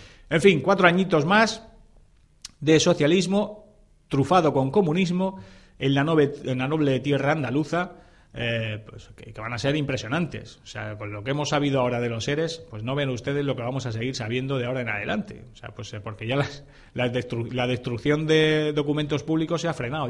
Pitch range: 120-150 Hz